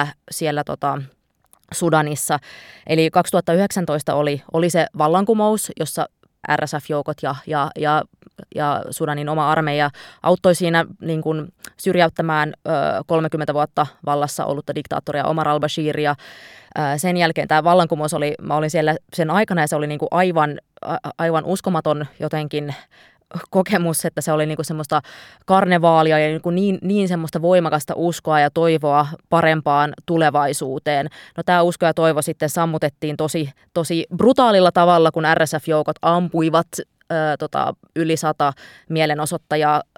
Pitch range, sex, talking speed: 150-170 Hz, female, 125 wpm